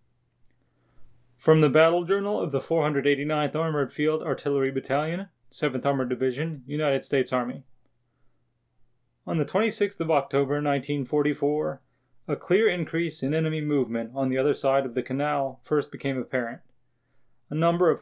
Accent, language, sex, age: American, English, male, 30-49